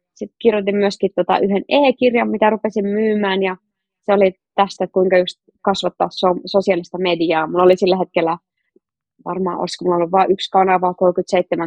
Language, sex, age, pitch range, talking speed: Finnish, female, 20-39, 185-220 Hz, 155 wpm